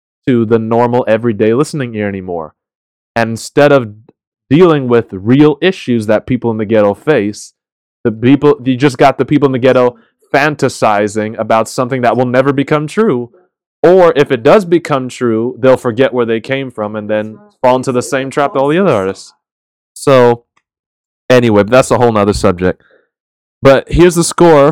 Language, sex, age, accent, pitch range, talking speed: English, male, 20-39, American, 105-135 Hz, 175 wpm